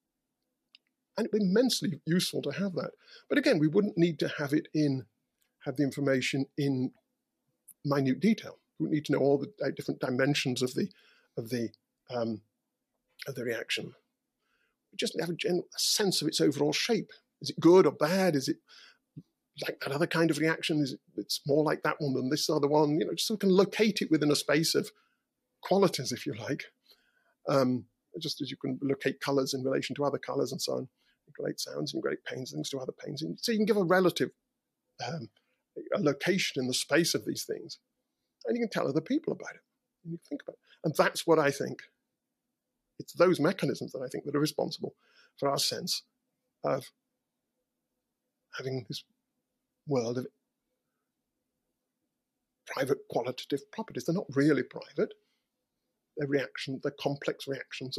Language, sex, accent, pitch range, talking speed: English, male, British, 140-210 Hz, 185 wpm